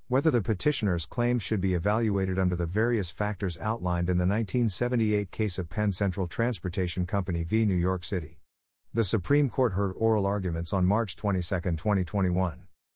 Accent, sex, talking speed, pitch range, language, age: American, male, 160 wpm, 90-115 Hz, English, 50-69